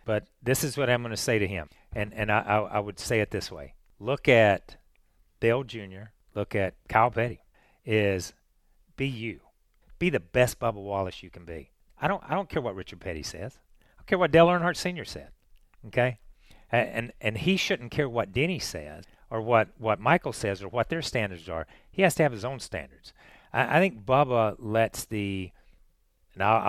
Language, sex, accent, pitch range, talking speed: English, male, American, 95-125 Hz, 200 wpm